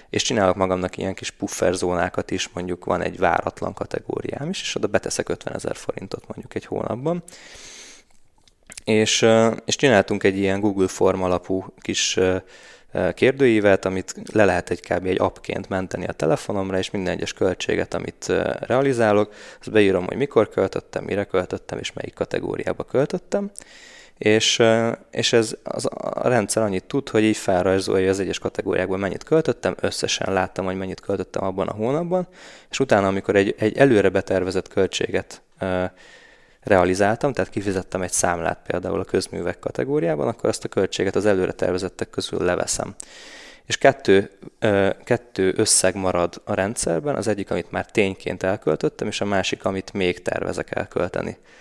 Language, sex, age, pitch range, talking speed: Hungarian, male, 20-39, 95-110 Hz, 150 wpm